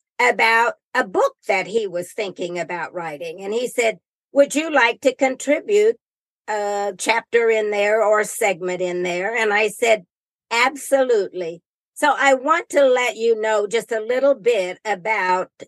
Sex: female